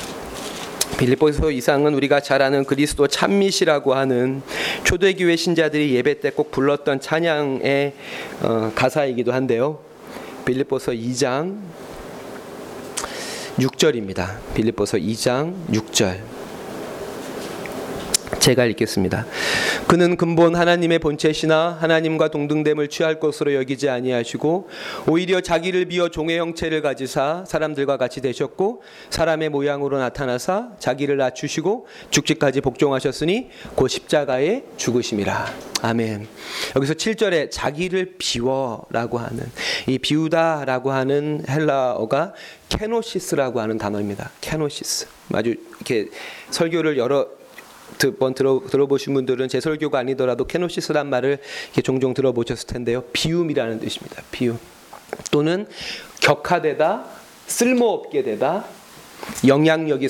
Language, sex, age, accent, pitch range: Korean, male, 30-49, native, 130-165 Hz